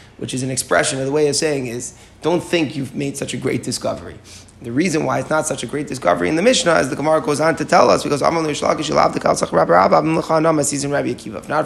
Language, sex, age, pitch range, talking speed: English, male, 30-49, 135-165 Hz, 210 wpm